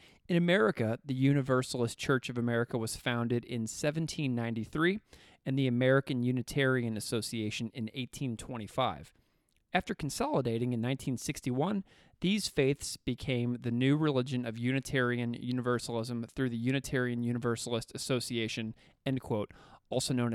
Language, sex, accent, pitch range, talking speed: English, male, American, 120-135 Hz, 120 wpm